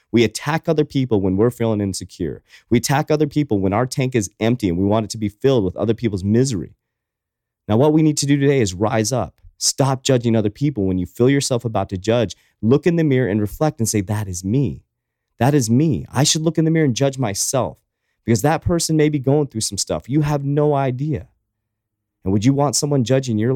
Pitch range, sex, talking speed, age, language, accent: 100-135 Hz, male, 235 wpm, 30-49, English, American